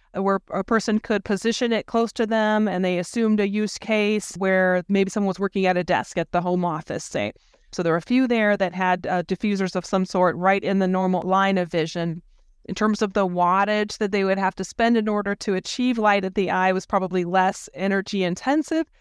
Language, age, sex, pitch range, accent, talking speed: English, 20-39, female, 185-215 Hz, American, 225 wpm